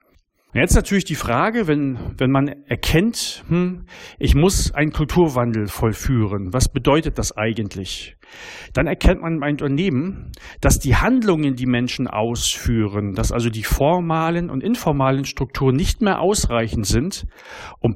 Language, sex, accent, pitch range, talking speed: German, male, German, 115-160 Hz, 140 wpm